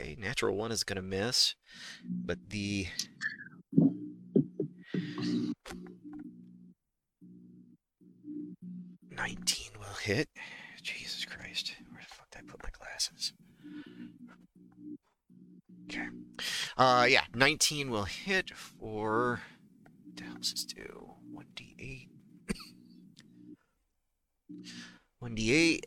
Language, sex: English, male